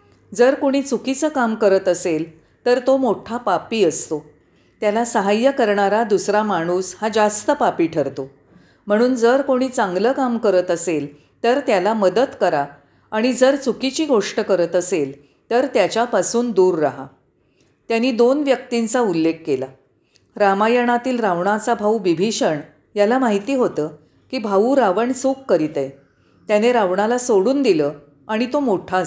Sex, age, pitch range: female, 40-59, 165-245 Hz